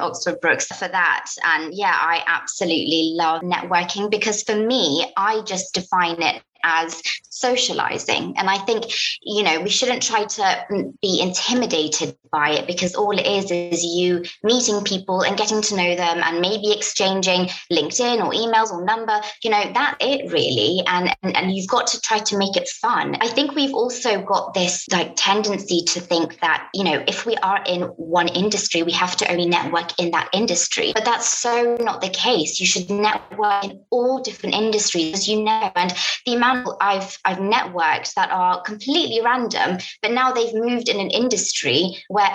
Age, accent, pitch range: 20-39, British, 180-230 Hz